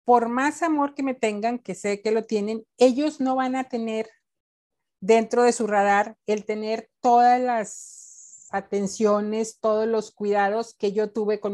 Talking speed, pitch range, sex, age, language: 165 wpm, 205-240 Hz, female, 50-69, Spanish